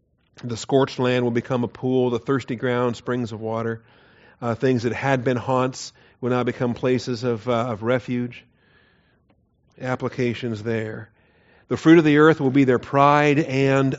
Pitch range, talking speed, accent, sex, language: 120-140 Hz, 165 wpm, American, male, English